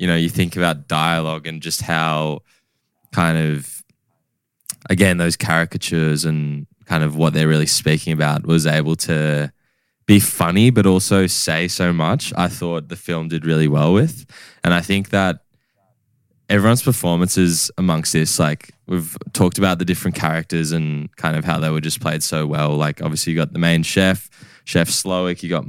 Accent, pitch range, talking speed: Australian, 80-90 Hz, 180 wpm